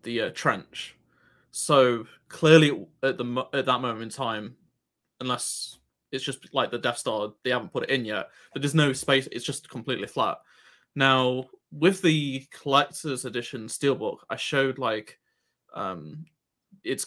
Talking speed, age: 160 wpm, 20-39